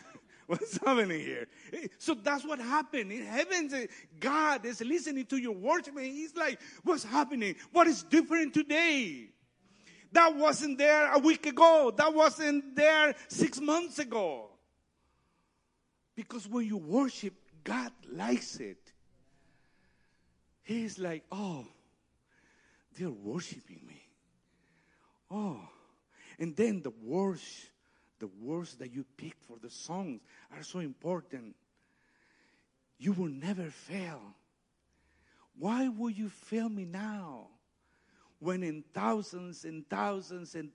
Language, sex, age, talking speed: English, male, 50-69, 120 wpm